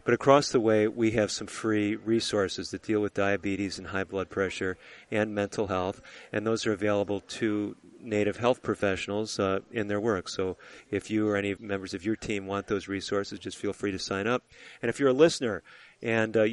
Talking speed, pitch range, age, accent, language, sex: 205 wpm, 100-115 Hz, 40-59, American, English, male